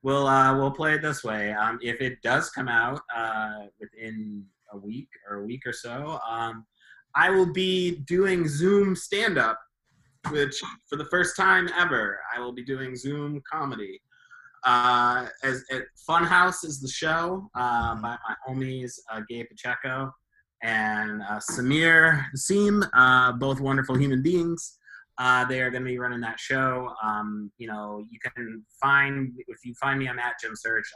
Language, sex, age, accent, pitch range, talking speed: English, male, 20-39, American, 110-140 Hz, 170 wpm